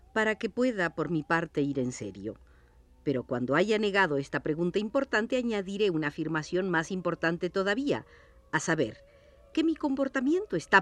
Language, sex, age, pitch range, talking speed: Spanish, female, 50-69, 145-210 Hz, 155 wpm